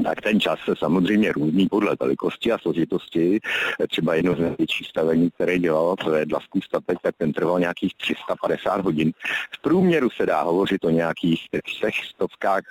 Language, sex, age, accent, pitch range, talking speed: Czech, male, 50-69, native, 85-135 Hz, 155 wpm